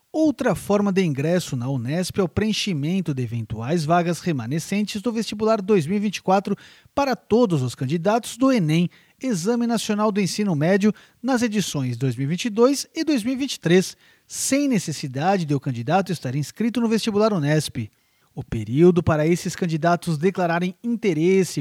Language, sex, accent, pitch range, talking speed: Portuguese, male, Brazilian, 155-220 Hz, 135 wpm